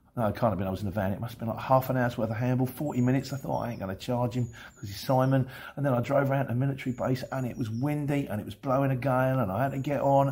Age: 40-59